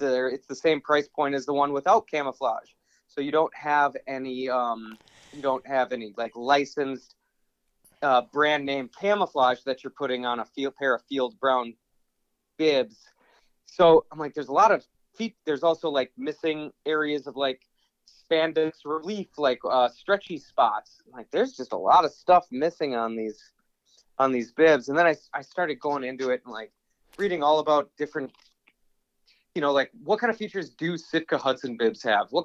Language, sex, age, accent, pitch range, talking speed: English, male, 30-49, American, 130-175 Hz, 185 wpm